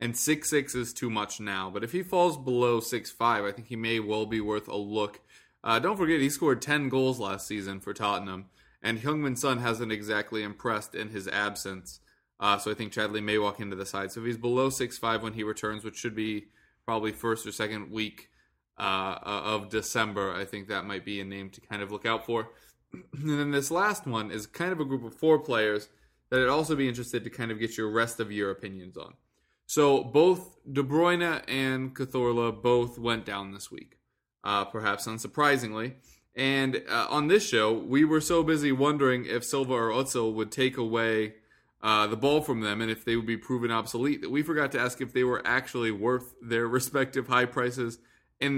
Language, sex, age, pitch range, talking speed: English, male, 20-39, 110-135 Hz, 210 wpm